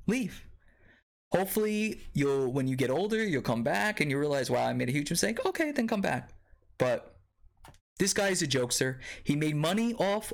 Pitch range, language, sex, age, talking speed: 115-145 Hz, English, male, 20-39, 190 wpm